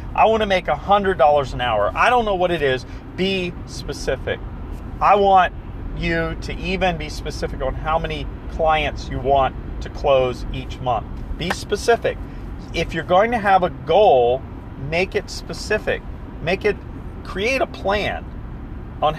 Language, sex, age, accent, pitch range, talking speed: English, male, 40-59, American, 140-185 Hz, 155 wpm